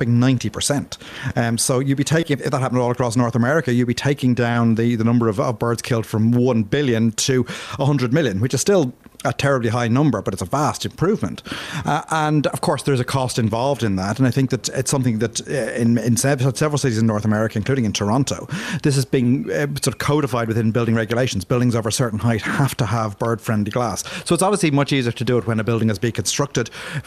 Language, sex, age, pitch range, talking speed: English, male, 30-49, 115-145 Hz, 230 wpm